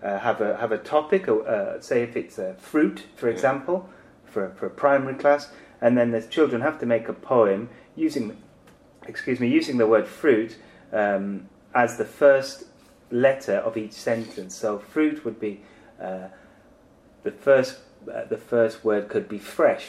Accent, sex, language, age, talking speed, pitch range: British, male, English, 30-49, 175 wpm, 110-140 Hz